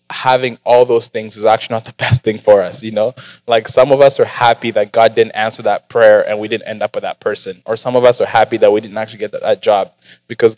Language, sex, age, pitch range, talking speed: English, male, 20-39, 115-135 Hz, 270 wpm